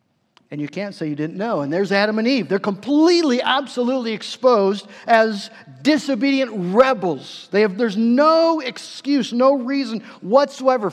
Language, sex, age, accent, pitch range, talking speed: English, male, 50-69, American, 180-265 Hz, 150 wpm